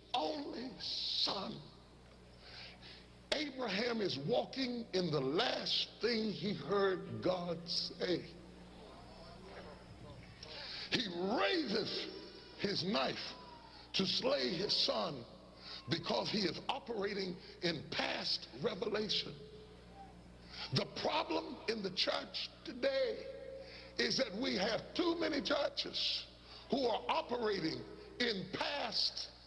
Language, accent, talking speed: English, American, 95 wpm